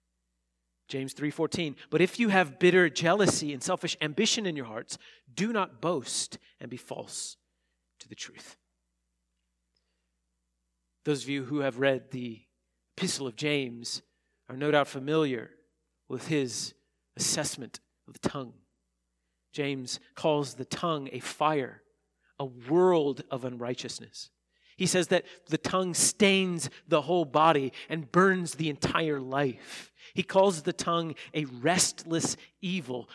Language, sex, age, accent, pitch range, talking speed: English, male, 40-59, American, 120-165 Hz, 135 wpm